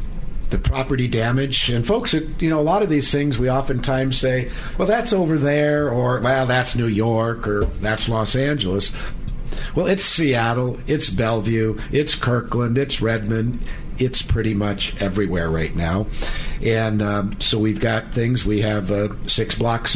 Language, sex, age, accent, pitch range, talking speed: English, male, 60-79, American, 110-140 Hz, 160 wpm